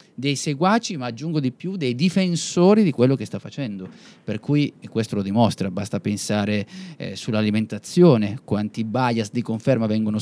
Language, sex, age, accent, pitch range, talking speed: Italian, male, 30-49, native, 105-125 Hz, 160 wpm